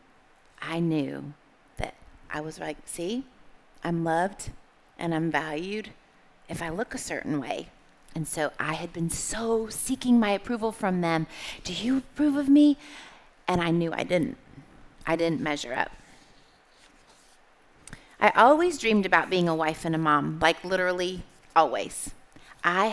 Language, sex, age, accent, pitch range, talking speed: English, female, 30-49, American, 165-230 Hz, 150 wpm